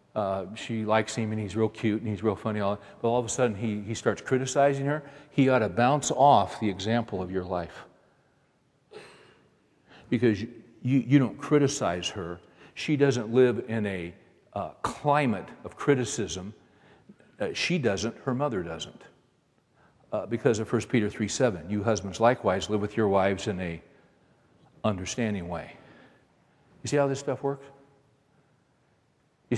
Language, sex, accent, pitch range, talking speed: English, male, American, 110-135 Hz, 165 wpm